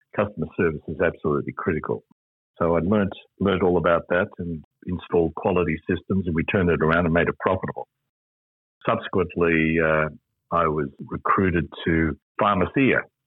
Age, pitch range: 60-79, 80-95 Hz